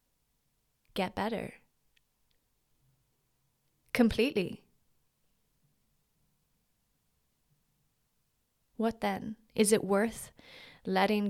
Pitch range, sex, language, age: 175-215 Hz, female, English, 20-39